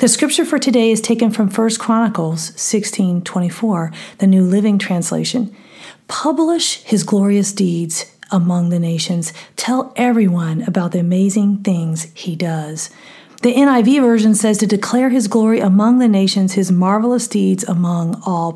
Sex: female